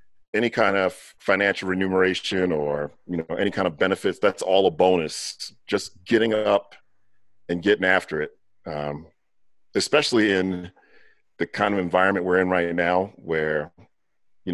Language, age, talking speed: English, 40-59, 150 wpm